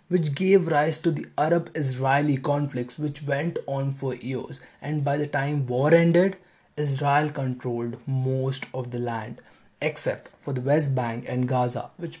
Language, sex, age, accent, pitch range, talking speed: English, male, 20-39, Indian, 120-145 Hz, 155 wpm